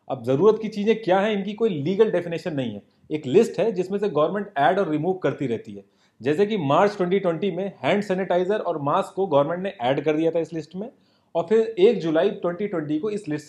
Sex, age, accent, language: male, 30-49, native, Hindi